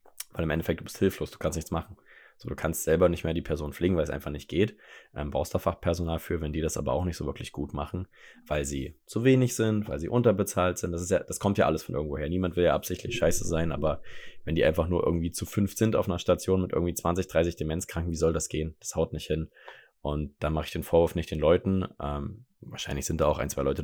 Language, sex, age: German, male, 20-39